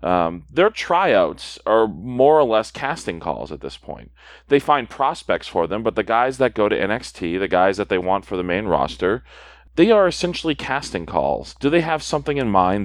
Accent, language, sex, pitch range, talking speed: American, English, male, 100-130 Hz, 205 wpm